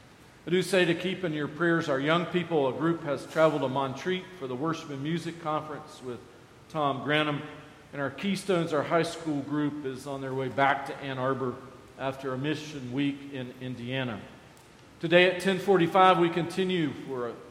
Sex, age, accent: male, 40-59, American